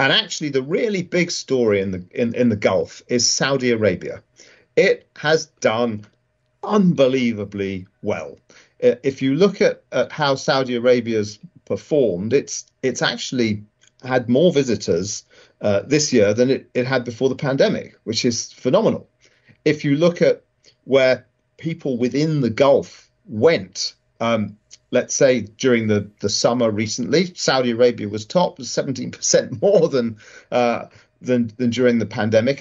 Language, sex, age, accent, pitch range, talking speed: English, male, 40-59, British, 120-150 Hz, 145 wpm